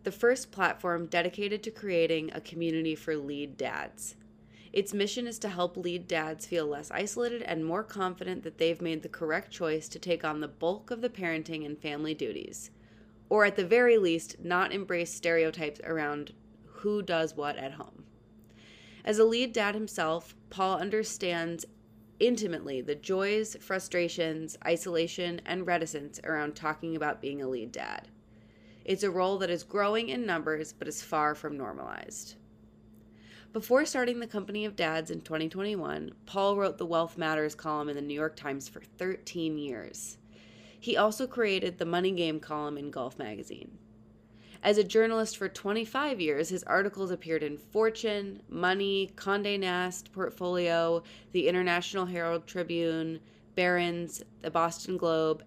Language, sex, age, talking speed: English, female, 30-49, 155 wpm